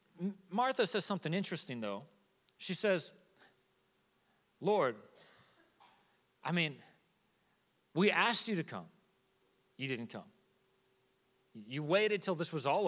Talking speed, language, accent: 110 wpm, English, American